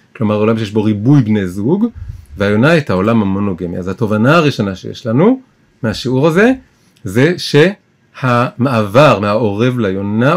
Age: 30-49